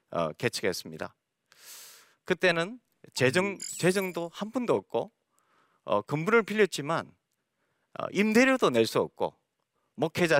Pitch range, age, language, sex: 155-235 Hz, 40-59, Korean, male